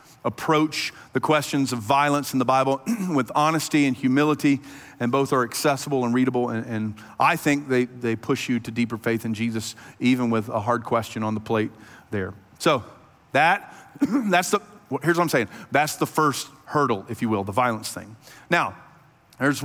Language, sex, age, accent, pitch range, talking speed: English, male, 40-59, American, 125-165 Hz, 185 wpm